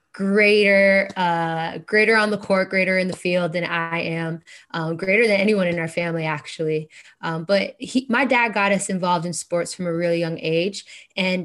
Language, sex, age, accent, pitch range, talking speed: English, female, 10-29, American, 170-195 Hz, 195 wpm